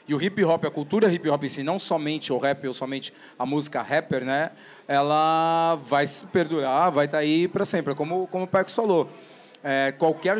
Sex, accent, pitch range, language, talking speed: male, Brazilian, 155-190 Hz, Portuguese, 190 wpm